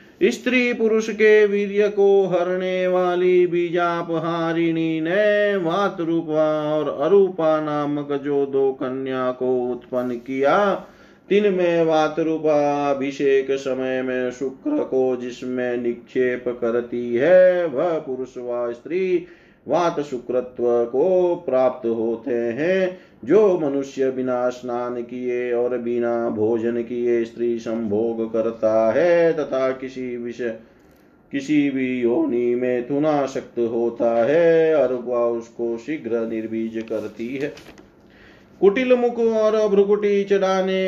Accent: native